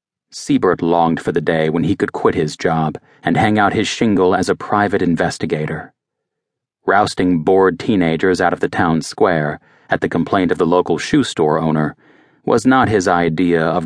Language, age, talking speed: English, 40-59, 180 wpm